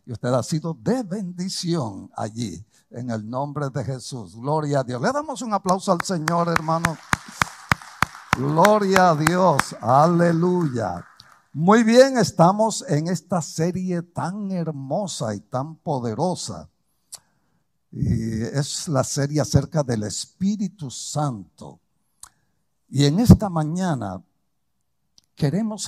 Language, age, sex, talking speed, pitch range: English, 60-79, male, 115 wpm, 125-170 Hz